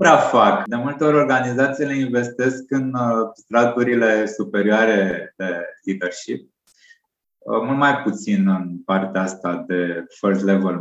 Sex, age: male, 20-39